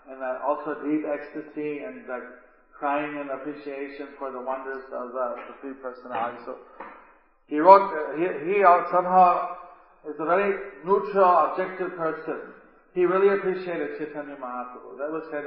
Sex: male